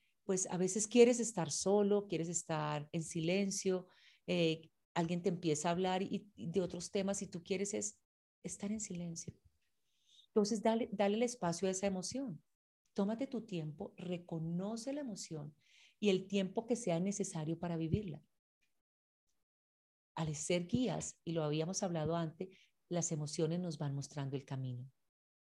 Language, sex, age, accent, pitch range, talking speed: Spanish, female, 40-59, Colombian, 155-195 Hz, 155 wpm